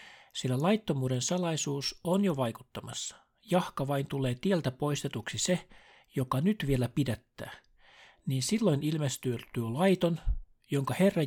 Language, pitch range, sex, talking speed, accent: Finnish, 120-155 Hz, male, 115 wpm, native